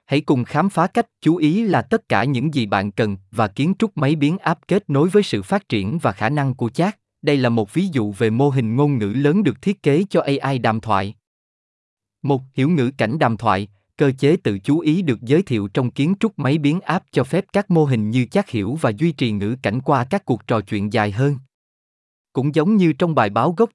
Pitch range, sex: 110-160 Hz, male